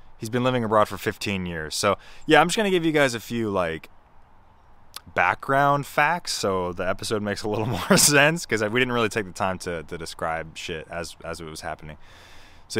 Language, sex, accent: English, male, American